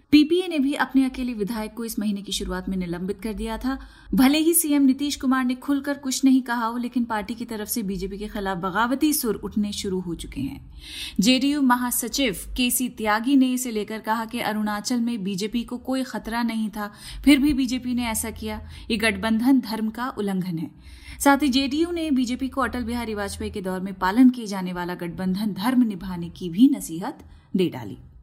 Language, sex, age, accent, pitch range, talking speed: Hindi, female, 30-49, native, 210-270 Hz, 205 wpm